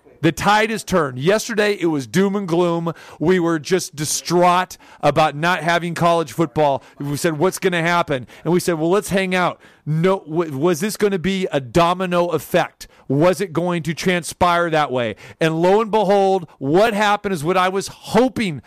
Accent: American